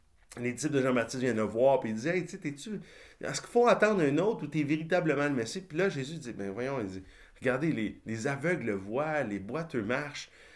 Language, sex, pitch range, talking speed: French, male, 120-165 Hz, 235 wpm